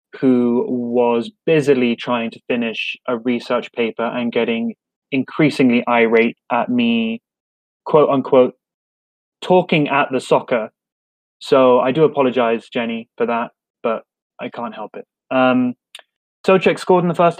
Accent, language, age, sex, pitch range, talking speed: British, English, 20-39, male, 120-155 Hz, 130 wpm